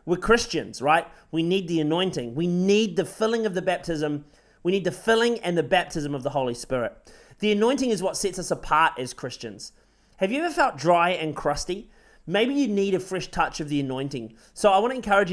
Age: 30-49